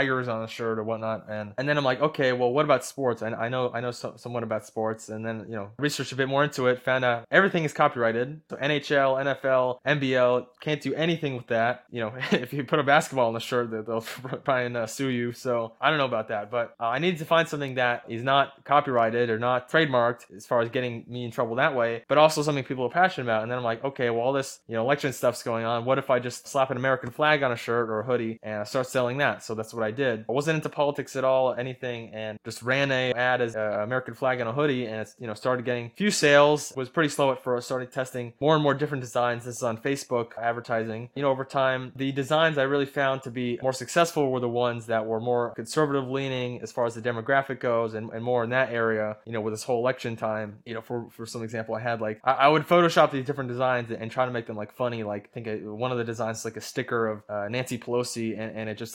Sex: male